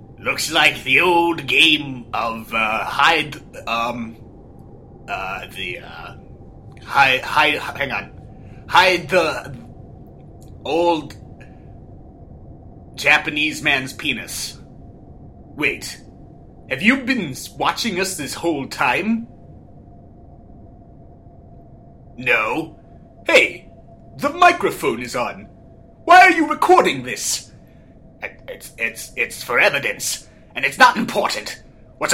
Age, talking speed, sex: 30-49, 95 wpm, male